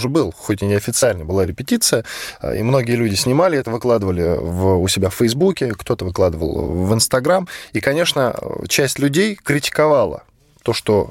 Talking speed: 150 wpm